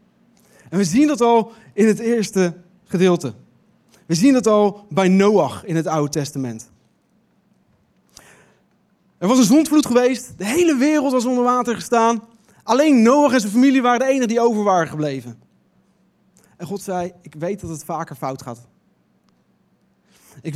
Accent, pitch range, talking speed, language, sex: Dutch, 160-205 Hz, 160 wpm, Dutch, male